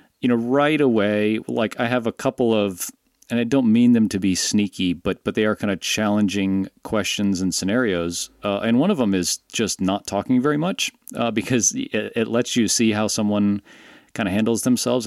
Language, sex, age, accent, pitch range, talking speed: English, male, 40-59, American, 95-120 Hz, 205 wpm